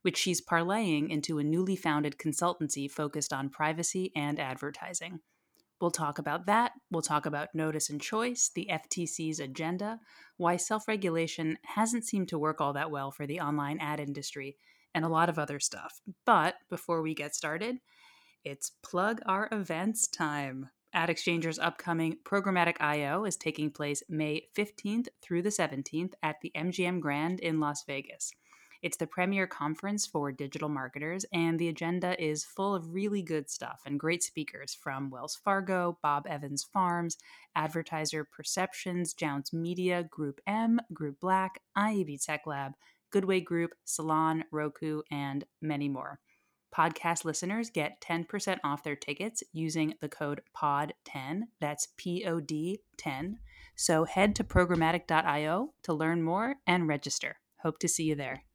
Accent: American